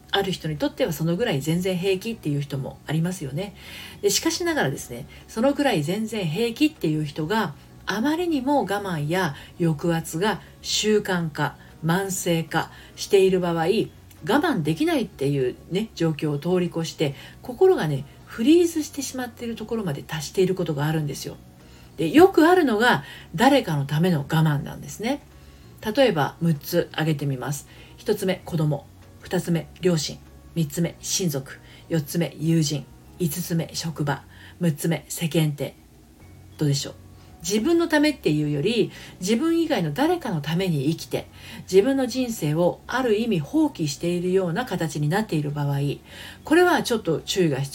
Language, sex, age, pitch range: Japanese, female, 40-59, 145-220 Hz